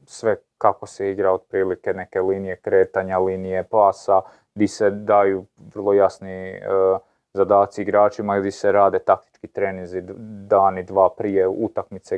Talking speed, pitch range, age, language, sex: 135 wpm, 95-115 Hz, 30-49, Croatian, male